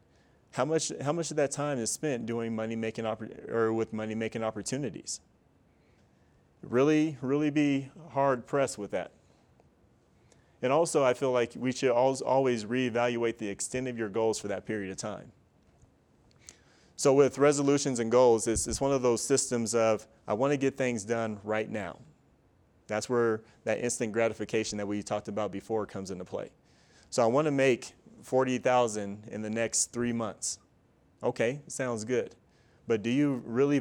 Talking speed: 165 wpm